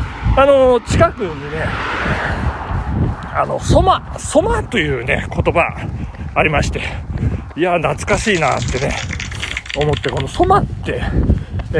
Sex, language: male, Japanese